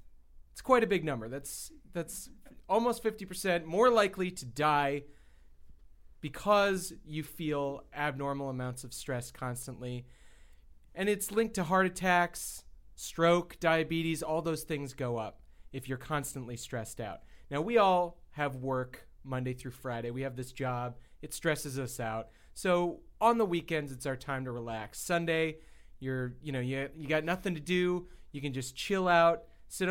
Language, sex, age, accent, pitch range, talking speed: English, male, 30-49, American, 125-180 Hz, 160 wpm